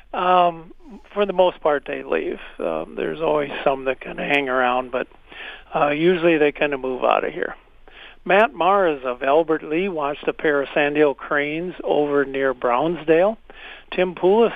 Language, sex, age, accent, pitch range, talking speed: English, male, 50-69, American, 140-170 Hz, 170 wpm